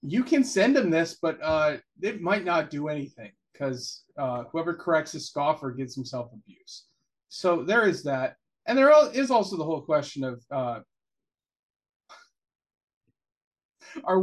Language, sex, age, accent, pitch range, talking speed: English, male, 30-49, American, 145-185 Hz, 150 wpm